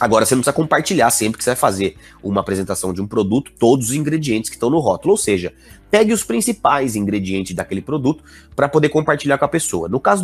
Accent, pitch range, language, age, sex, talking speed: Brazilian, 105-165 Hz, Portuguese, 30-49, male, 225 wpm